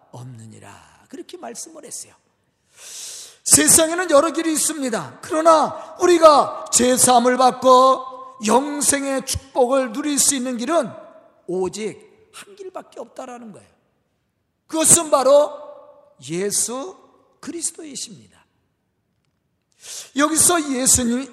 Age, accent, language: 40-59, native, Korean